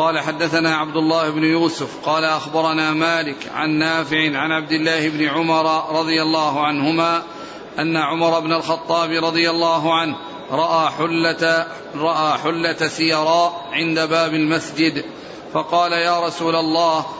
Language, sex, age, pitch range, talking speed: Arabic, male, 40-59, 155-170 Hz, 130 wpm